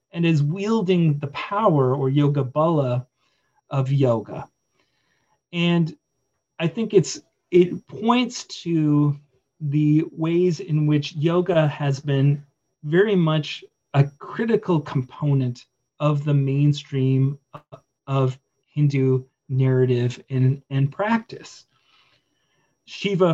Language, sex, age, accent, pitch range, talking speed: English, male, 40-59, American, 140-160 Hz, 100 wpm